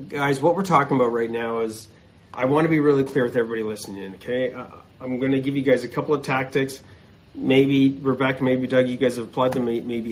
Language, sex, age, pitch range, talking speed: English, male, 40-59, 115-150 Hz, 235 wpm